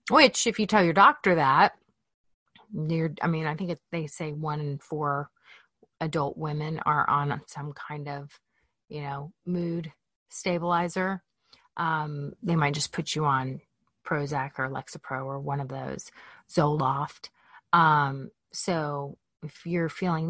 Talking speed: 145 wpm